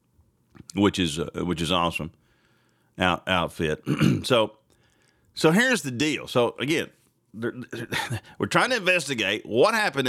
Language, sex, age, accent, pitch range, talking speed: English, male, 40-59, American, 110-140 Hz, 120 wpm